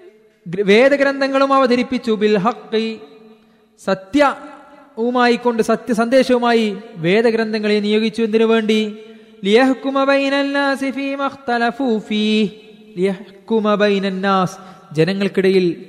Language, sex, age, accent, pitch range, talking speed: Malayalam, male, 20-39, native, 190-225 Hz, 40 wpm